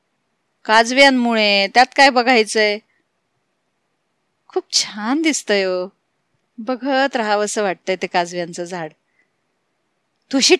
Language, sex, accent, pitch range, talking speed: Marathi, female, native, 200-270 Hz, 85 wpm